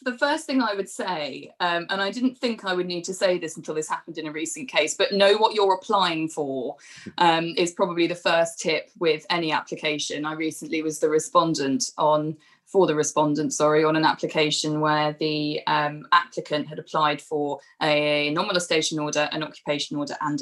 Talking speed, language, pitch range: 195 wpm, English, 150-180 Hz